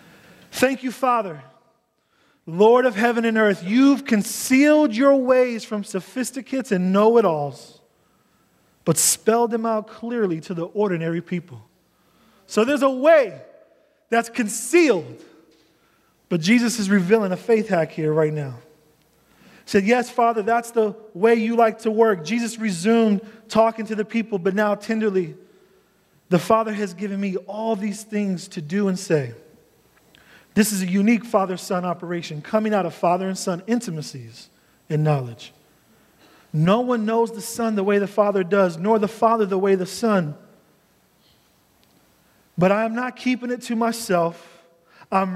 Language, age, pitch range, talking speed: English, 30-49, 175-230 Hz, 150 wpm